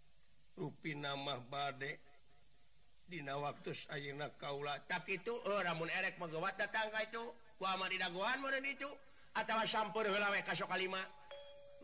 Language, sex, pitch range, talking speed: Indonesian, male, 175-200 Hz, 130 wpm